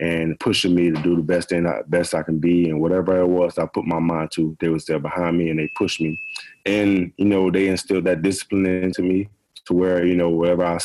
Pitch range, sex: 80-90 Hz, male